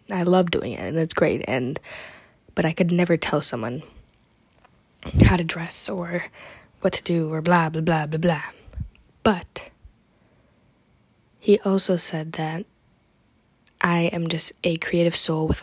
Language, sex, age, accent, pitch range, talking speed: English, female, 20-39, American, 160-185 Hz, 150 wpm